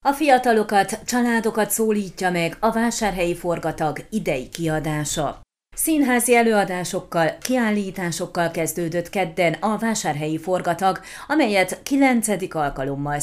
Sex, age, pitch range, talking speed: female, 30-49, 170-225 Hz, 95 wpm